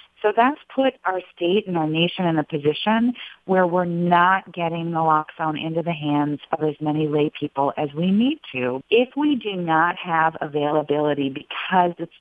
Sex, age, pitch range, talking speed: female, 40-59, 150-185 Hz, 175 wpm